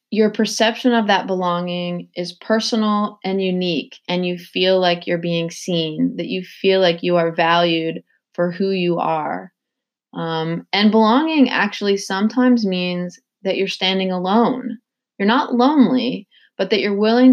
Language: English